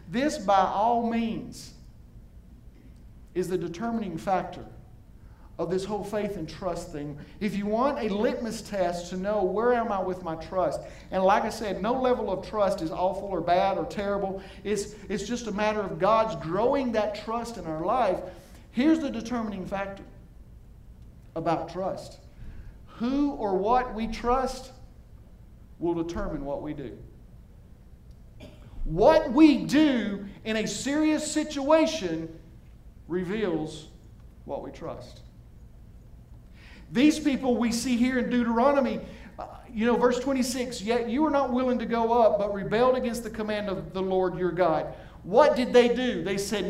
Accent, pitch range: American, 185-245 Hz